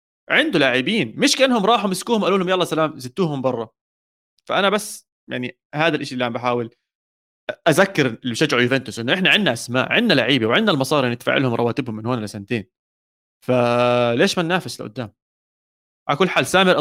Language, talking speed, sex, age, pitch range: Arabic, 165 wpm, male, 20-39, 125-185 Hz